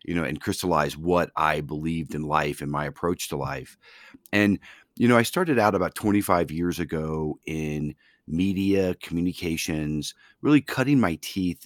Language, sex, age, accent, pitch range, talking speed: English, male, 40-59, American, 80-90 Hz, 160 wpm